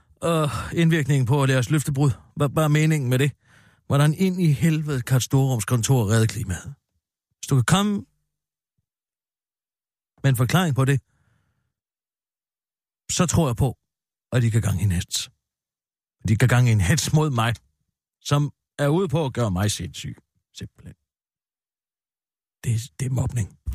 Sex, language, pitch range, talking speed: male, Danish, 110-155 Hz, 155 wpm